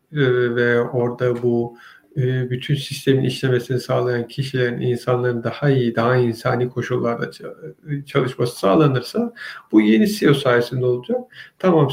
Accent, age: native, 50-69